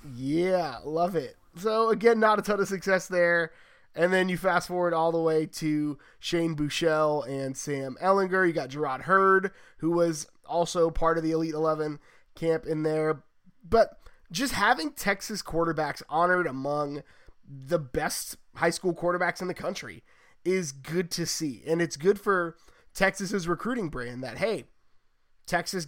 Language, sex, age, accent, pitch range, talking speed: English, male, 20-39, American, 155-200 Hz, 160 wpm